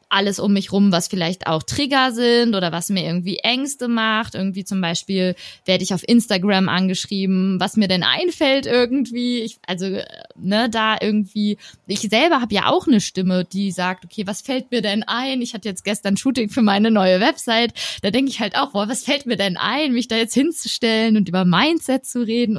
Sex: female